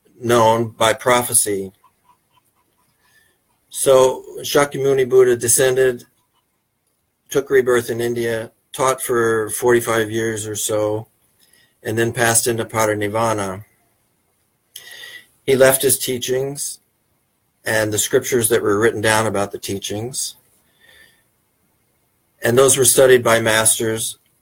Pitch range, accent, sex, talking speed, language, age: 110-125 Hz, American, male, 105 wpm, English, 50-69